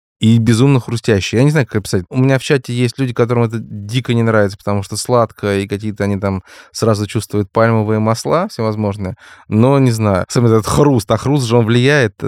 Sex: male